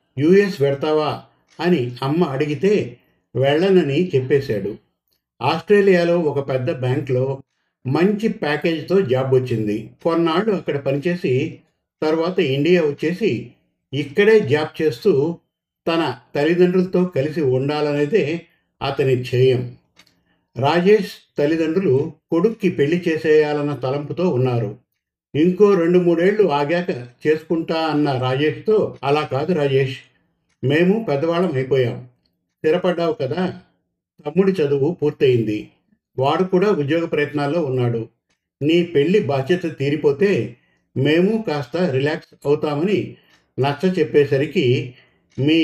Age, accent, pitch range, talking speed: 50-69, native, 140-175 Hz, 95 wpm